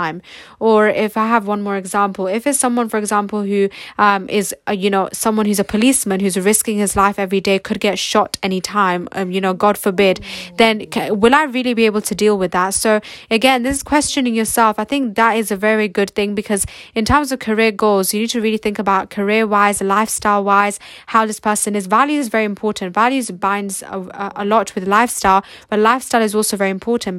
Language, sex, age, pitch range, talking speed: English, female, 10-29, 195-225 Hz, 215 wpm